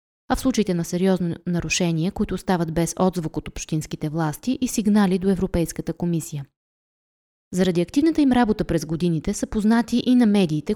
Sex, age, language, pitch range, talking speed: female, 20-39, Bulgarian, 170-215 Hz, 160 wpm